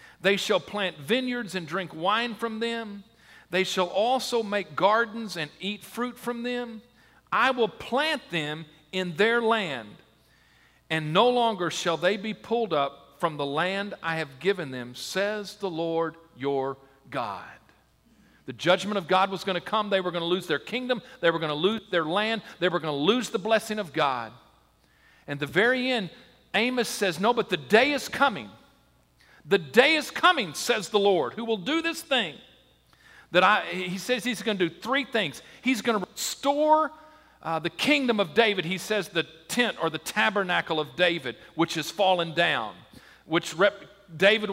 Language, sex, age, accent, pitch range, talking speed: English, male, 50-69, American, 170-230 Hz, 185 wpm